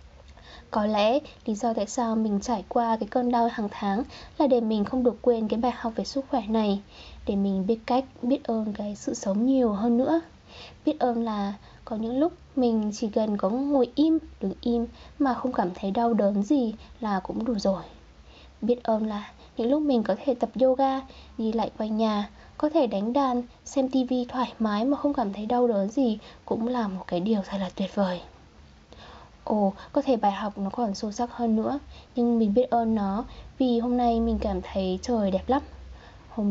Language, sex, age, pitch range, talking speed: Vietnamese, female, 10-29, 200-250 Hz, 210 wpm